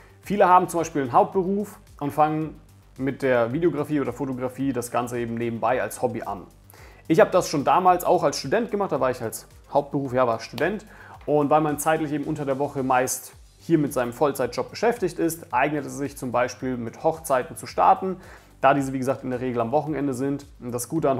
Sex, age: male, 40-59